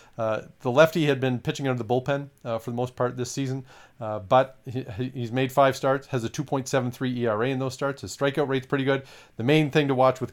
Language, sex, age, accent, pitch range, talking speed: English, male, 40-59, American, 110-135 Hz, 240 wpm